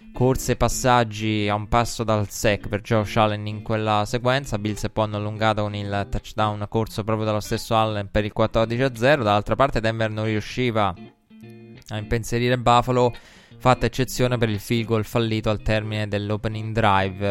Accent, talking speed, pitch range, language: native, 170 wpm, 105-115 Hz, Italian